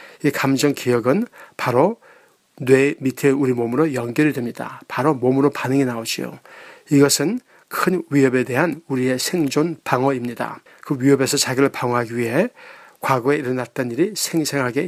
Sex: male